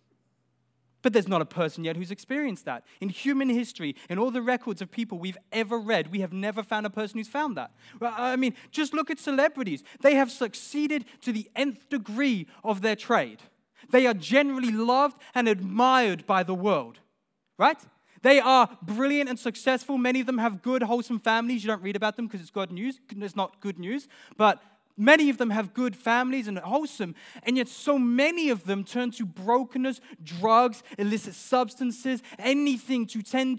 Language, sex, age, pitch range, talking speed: English, male, 20-39, 205-255 Hz, 190 wpm